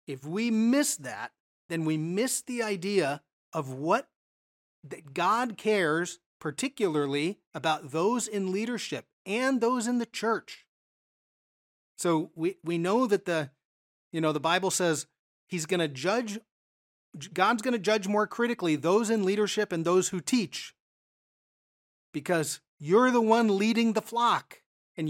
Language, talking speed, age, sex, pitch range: English, 145 wpm, 40-59, male, 155-210 Hz